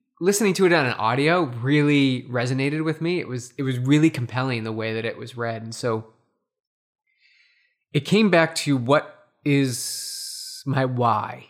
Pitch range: 130-175 Hz